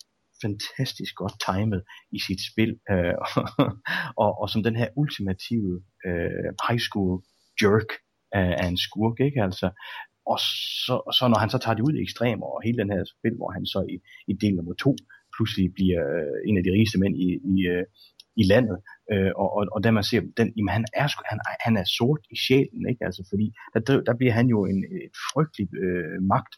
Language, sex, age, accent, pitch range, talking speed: English, male, 30-49, Danish, 95-115 Hz, 185 wpm